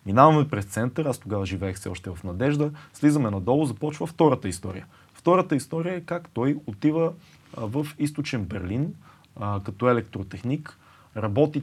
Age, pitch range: 30-49, 105-150 Hz